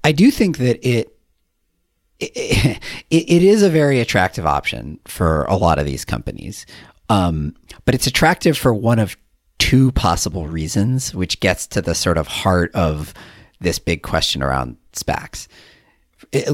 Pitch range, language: 85-120 Hz, English